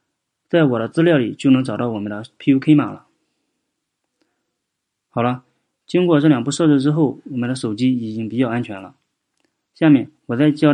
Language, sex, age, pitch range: Chinese, male, 30-49, 120-150 Hz